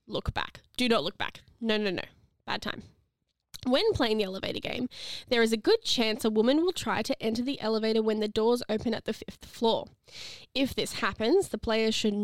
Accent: Australian